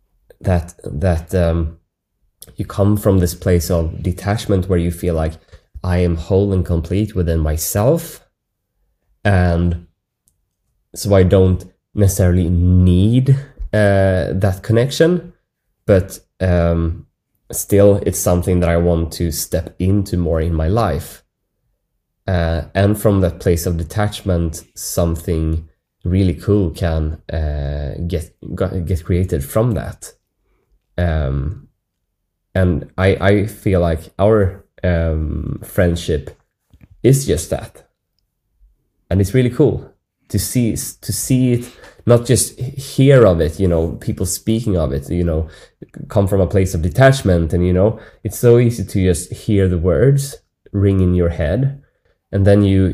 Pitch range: 85-105 Hz